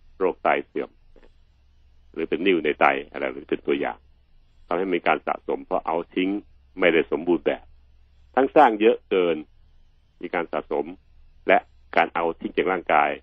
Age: 60-79